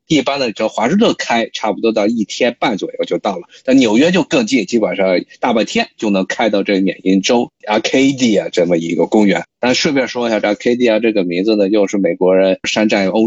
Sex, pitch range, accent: male, 100-125 Hz, native